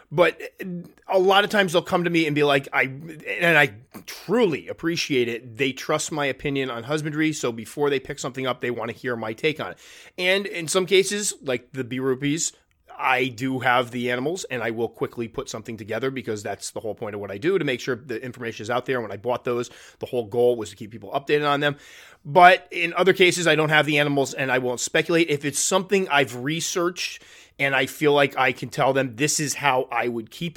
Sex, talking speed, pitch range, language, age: male, 240 wpm, 120-165 Hz, English, 30-49